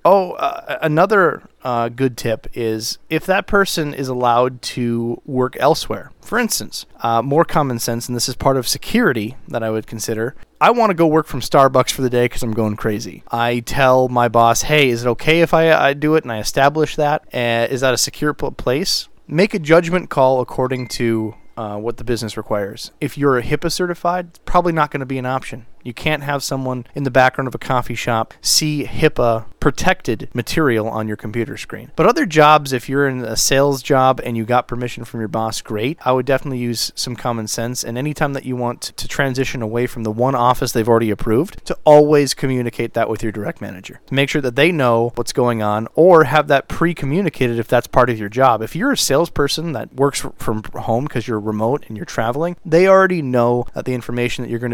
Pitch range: 115-145 Hz